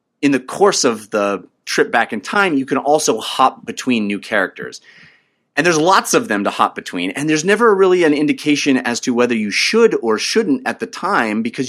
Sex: male